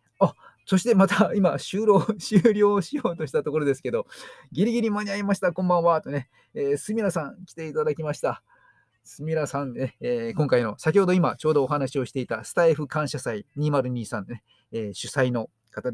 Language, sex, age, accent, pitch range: Japanese, male, 40-59, native, 120-185 Hz